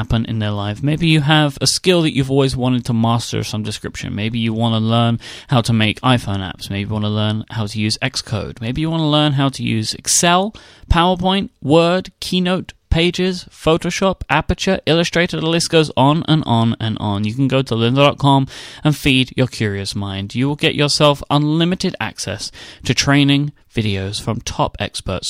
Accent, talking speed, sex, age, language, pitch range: British, 190 wpm, male, 30-49, English, 115-155 Hz